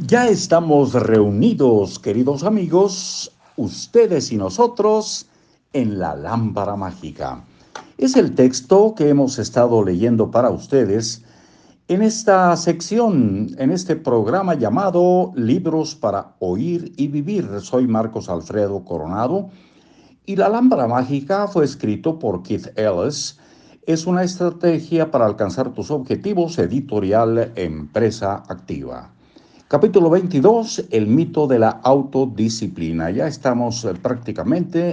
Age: 60-79